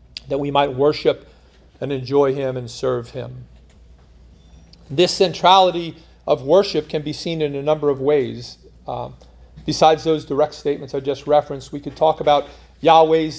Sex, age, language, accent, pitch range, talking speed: male, 40-59, English, American, 130-160 Hz, 155 wpm